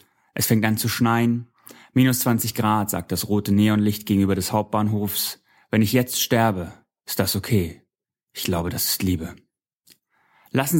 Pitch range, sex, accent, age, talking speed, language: 100-125 Hz, male, German, 30-49, 155 wpm, German